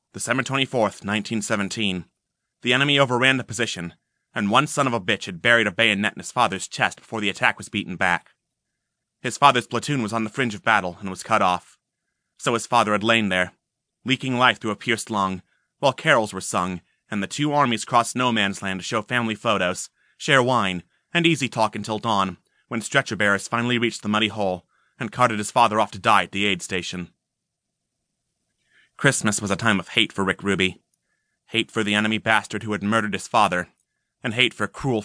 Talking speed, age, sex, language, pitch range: 200 wpm, 30-49, male, English, 100-120 Hz